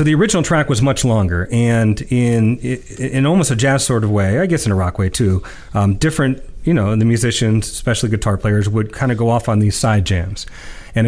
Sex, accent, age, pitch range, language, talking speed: male, American, 30-49, 105-135 Hz, English, 230 wpm